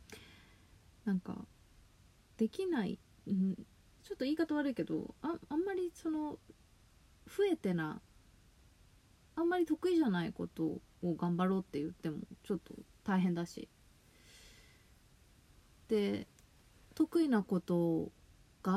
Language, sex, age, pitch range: Japanese, female, 20-39, 180-290 Hz